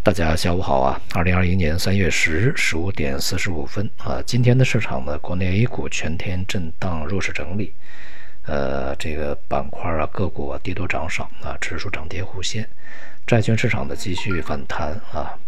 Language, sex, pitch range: Chinese, male, 80-105 Hz